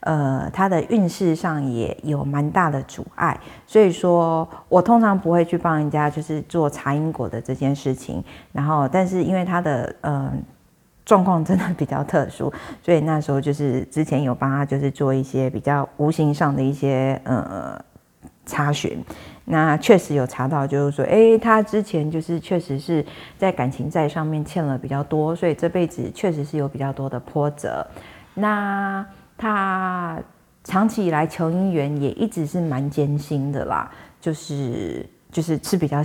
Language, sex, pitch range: Chinese, female, 140-175 Hz